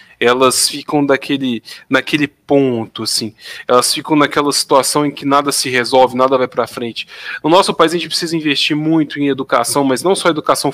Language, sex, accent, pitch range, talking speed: Portuguese, male, Brazilian, 130-170 Hz, 185 wpm